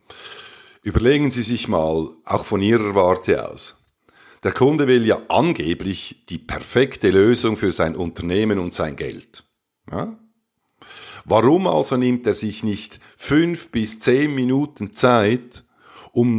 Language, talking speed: German, 130 wpm